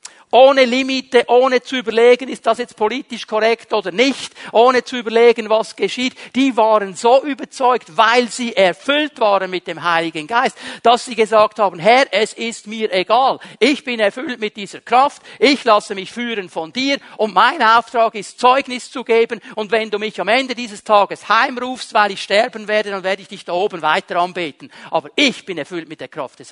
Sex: male